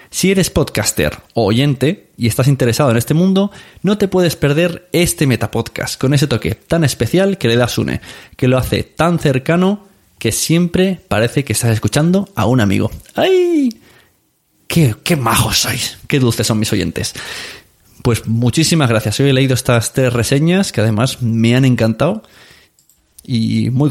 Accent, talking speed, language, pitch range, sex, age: Spanish, 165 wpm, Spanish, 115-145 Hz, male, 20-39